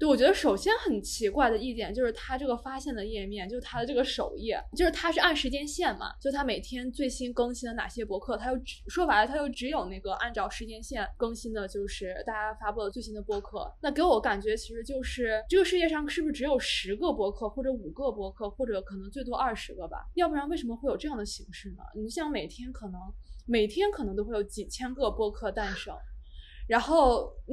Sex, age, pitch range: female, 20-39, 215-285 Hz